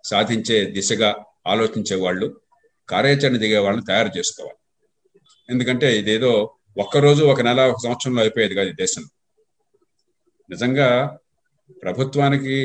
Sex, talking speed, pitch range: male, 100 wpm, 125-180 Hz